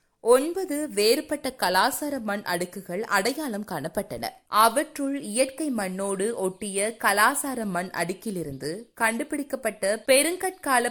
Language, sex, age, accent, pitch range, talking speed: Tamil, female, 20-39, native, 210-290 Hz, 85 wpm